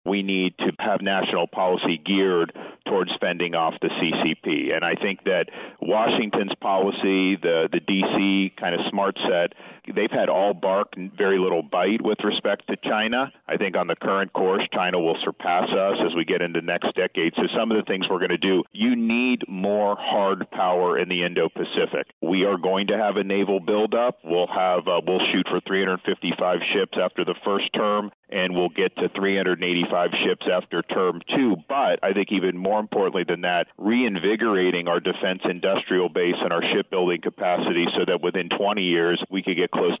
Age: 50-69